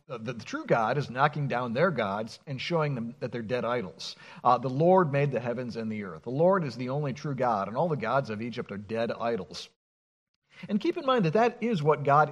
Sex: male